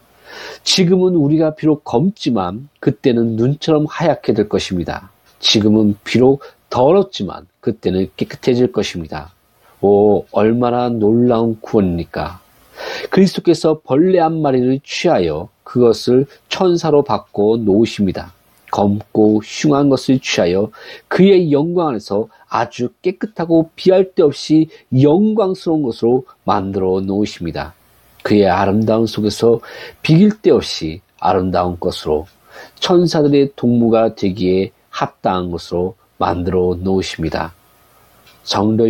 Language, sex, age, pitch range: Korean, male, 40-59, 100-150 Hz